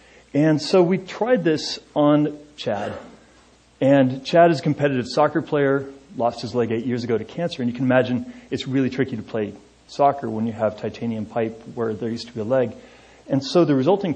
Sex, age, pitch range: male, 30-49, 115-150 Hz